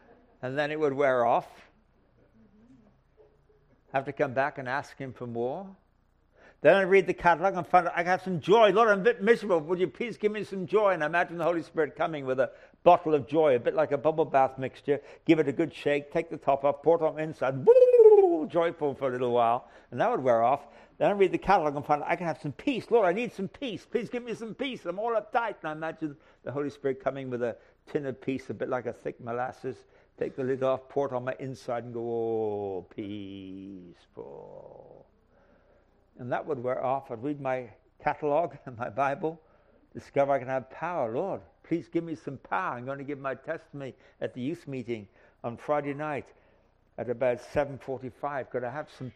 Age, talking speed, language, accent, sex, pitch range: 60-79, 225 wpm, English, British, male, 125-170 Hz